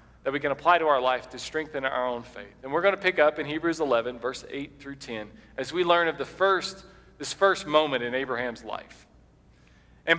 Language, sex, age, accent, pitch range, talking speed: English, male, 40-59, American, 140-200 Hz, 225 wpm